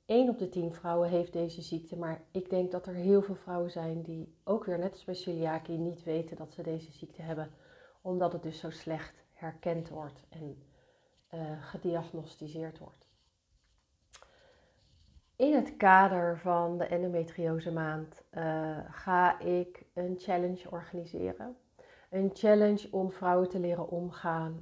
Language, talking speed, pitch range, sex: Dutch, 150 wpm, 165-185 Hz, female